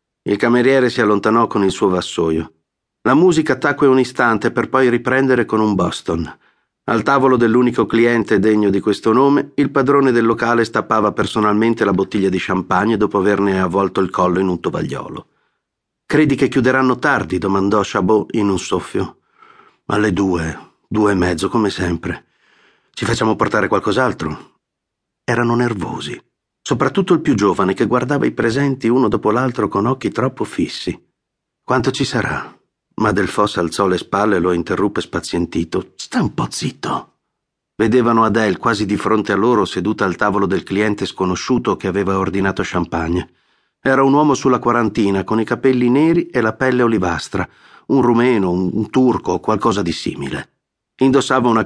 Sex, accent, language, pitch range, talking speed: male, native, Italian, 100-130 Hz, 160 wpm